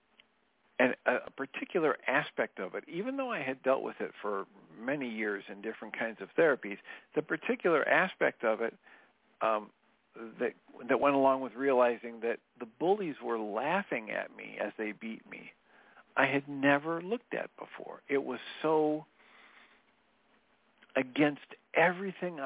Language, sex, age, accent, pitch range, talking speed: English, male, 50-69, American, 115-145 Hz, 145 wpm